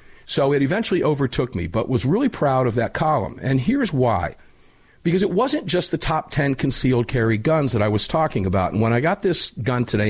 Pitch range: 105-150 Hz